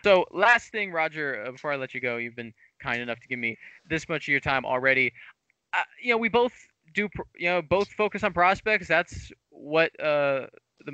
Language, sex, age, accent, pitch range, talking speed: English, male, 20-39, American, 140-180 Hz, 210 wpm